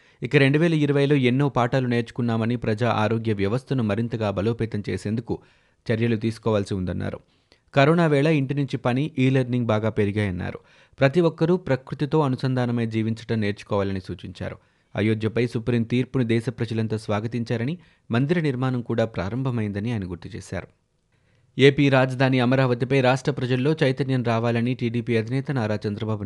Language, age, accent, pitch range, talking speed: Telugu, 30-49, native, 105-130 Hz, 125 wpm